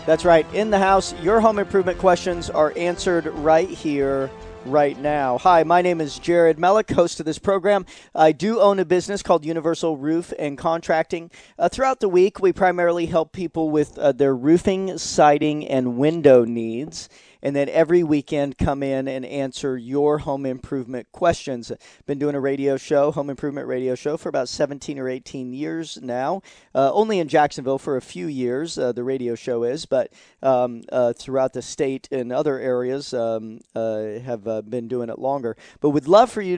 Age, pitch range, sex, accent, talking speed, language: 40-59, 135-165 Hz, male, American, 185 wpm, English